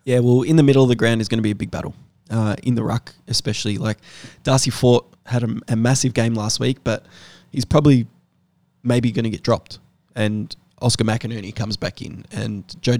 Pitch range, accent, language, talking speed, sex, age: 110-125 Hz, Australian, English, 210 wpm, male, 20-39